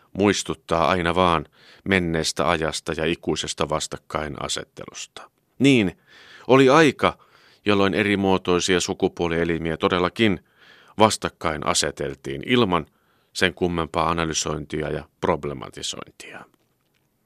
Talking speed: 75 wpm